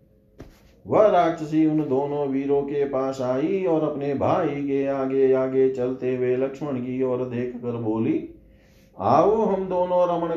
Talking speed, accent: 155 wpm, native